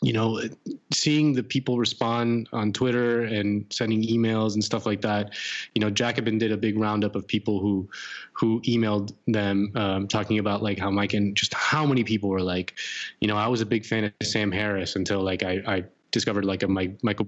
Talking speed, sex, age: 205 wpm, male, 20-39